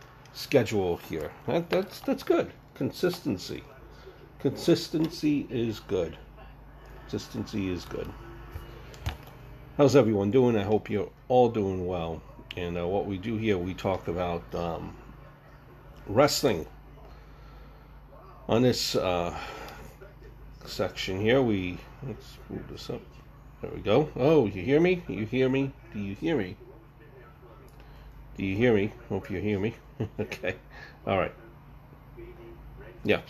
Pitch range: 100-135 Hz